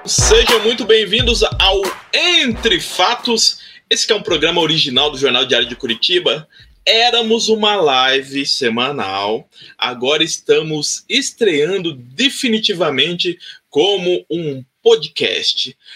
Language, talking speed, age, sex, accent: Portuguese, 105 wpm, 20-39, male, Brazilian